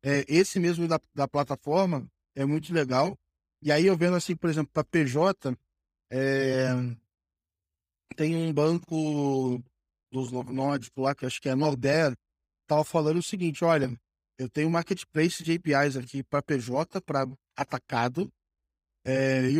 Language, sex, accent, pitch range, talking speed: Portuguese, male, Brazilian, 135-190 Hz, 155 wpm